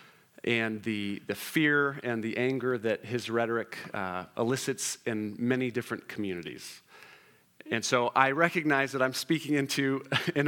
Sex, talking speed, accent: male, 145 wpm, American